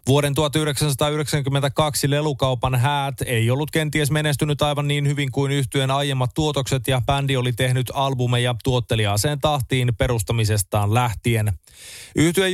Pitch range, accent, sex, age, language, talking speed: 120-145 Hz, native, male, 20-39, Finnish, 120 wpm